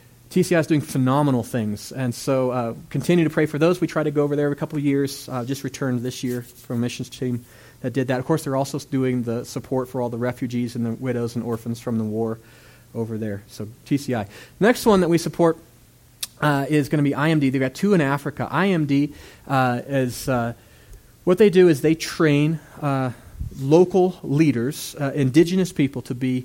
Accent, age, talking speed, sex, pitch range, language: American, 30-49, 210 wpm, male, 125-155 Hz, English